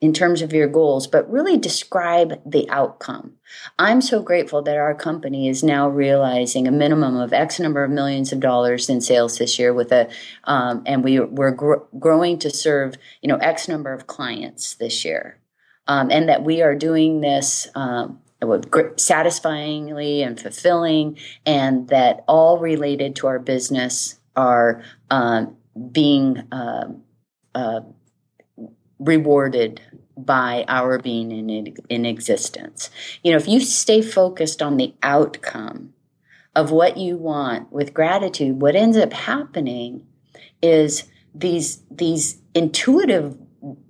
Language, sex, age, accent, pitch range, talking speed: English, female, 30-49, American, 135-170 Hz, 140 wpm